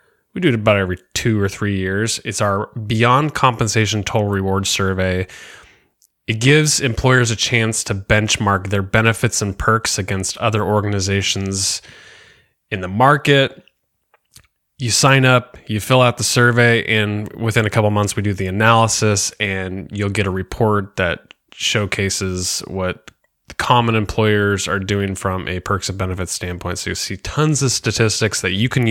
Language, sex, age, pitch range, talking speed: English, male, 20-39, 100-120 Hz, 160 wpm